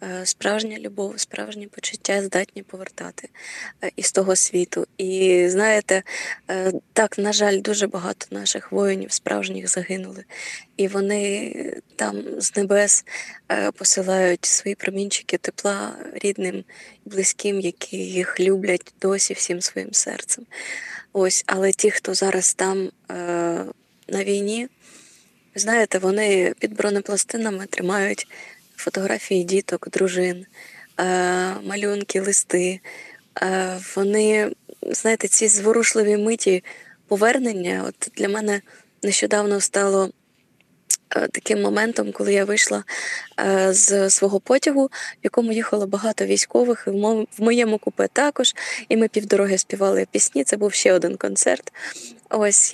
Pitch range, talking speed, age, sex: 185-215 Hz, 110 wpm, 20-39, female